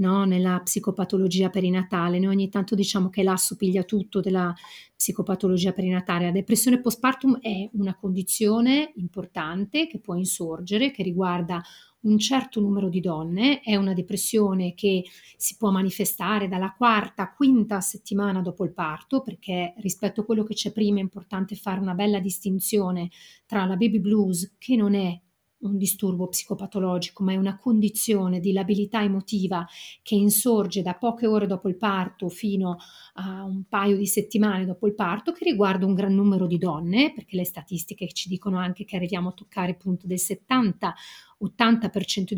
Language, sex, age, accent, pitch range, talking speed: Italian, female, 40-59, native, 185-210 Hz, 160 wpm